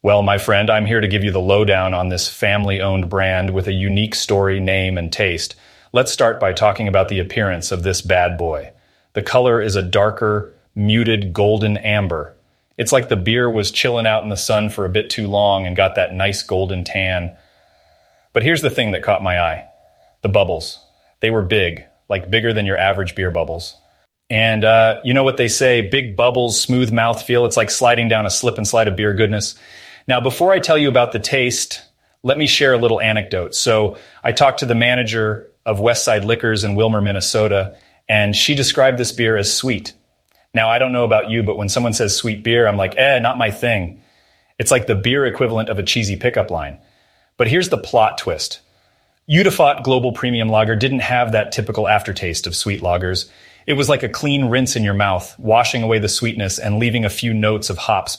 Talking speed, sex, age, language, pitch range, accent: 210 wpm, male, 30-49, English, 95-120 Hz, American